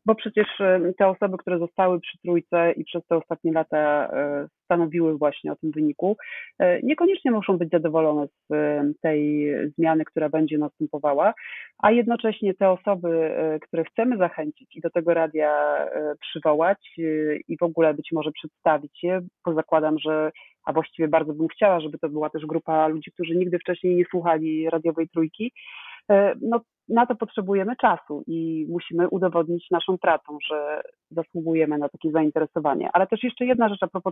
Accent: native